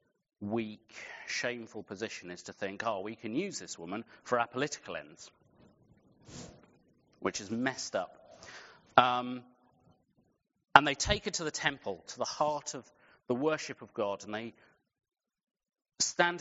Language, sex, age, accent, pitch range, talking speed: English, male, 30-49, British, 110-145 Hz, 145 wpm